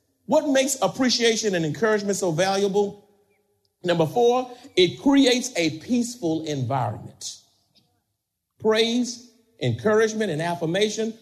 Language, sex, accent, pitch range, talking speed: English, male, American, 135-225 Hz, 95 wpm